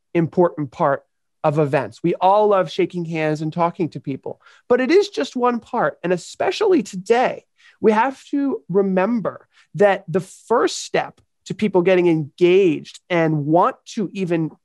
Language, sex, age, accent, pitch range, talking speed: English, male, 30-49, American, 165-220 Hz, 155 wpm